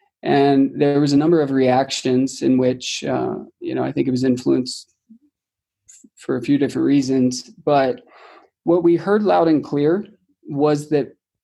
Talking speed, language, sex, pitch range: 165 wpm, English, male, 125-155 Hz